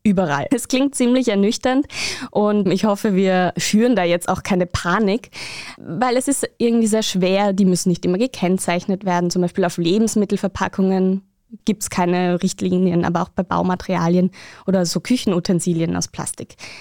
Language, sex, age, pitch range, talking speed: German, female, 20-39, 175-210 Hz, 155 wpm